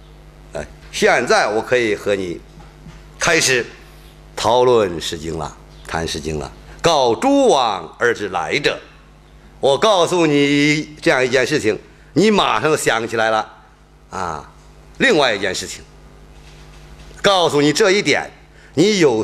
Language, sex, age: Chinese, male, 50-69